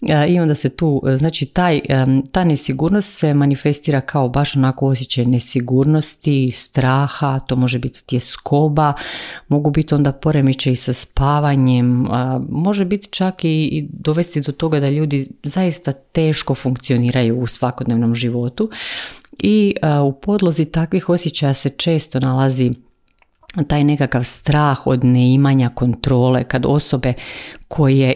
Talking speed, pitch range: 125 wpm, 125-150 Hz